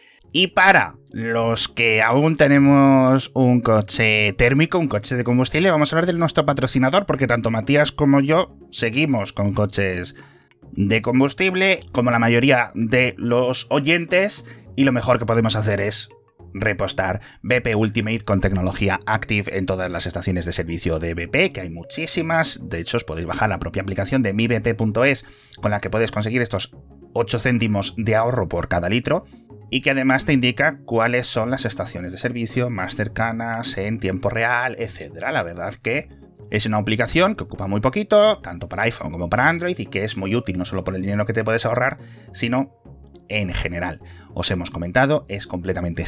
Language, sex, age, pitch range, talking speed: Spanish, male, 30-49, 95-125 Hz, 180 wpm